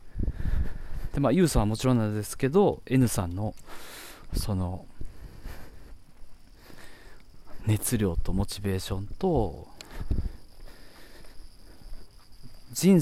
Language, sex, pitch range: Japanese, male, 95-130 Hz